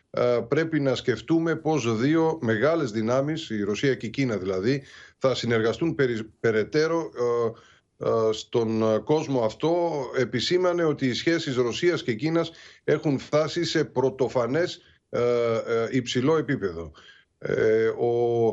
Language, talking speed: Greek, 105 wpm